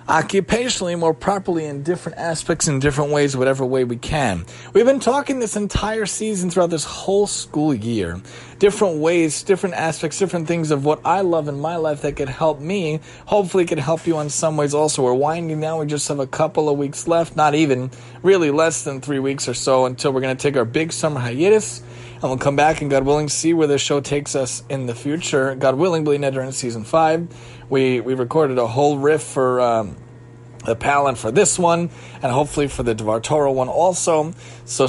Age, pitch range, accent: 30-49, 130-160 Hz, American